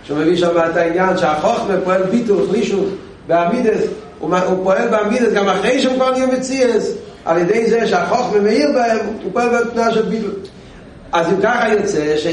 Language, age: Hebrew, 40-59